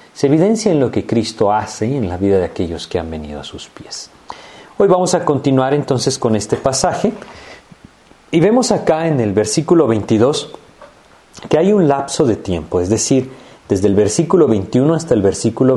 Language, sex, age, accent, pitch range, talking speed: Spanish, male, 40-59, Mexican, 115-165 Hz, 185 wpm